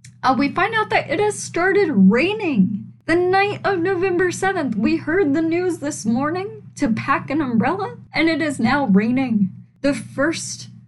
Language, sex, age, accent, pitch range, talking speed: English, female, 10-29, American, 215-285 Hz, 170 wpm